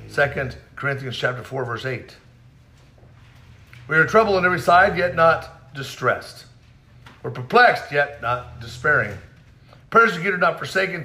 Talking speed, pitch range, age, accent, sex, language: 125 wpm, 125-195 Hz, 50-69, American, male, English